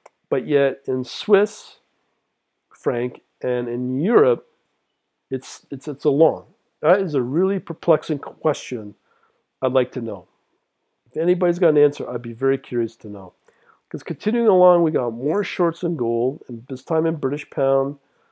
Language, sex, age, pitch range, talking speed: English, male, 50-69, 120-150 Hz, 160 wpm